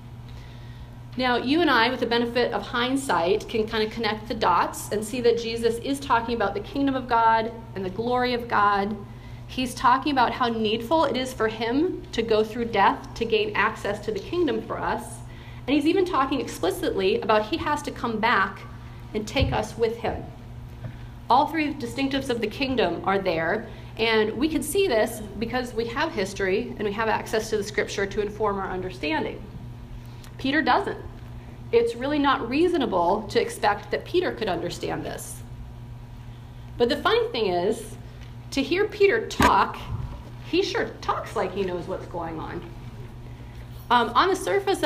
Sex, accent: female, American